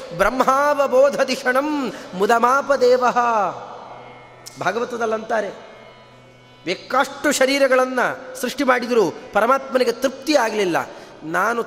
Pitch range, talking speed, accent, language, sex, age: 205-270 Hz, 60 wpm, native, Kannada, male, 30-49